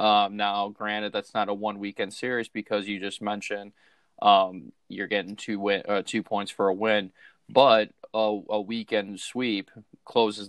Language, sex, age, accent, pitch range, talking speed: English, male, 20-39, American, 105-115 Hz, 170 wpm